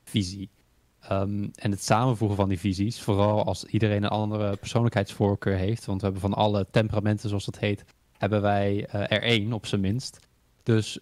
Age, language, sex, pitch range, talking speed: 20-39, Dutch, male, 100-115 Hz, 175 wpm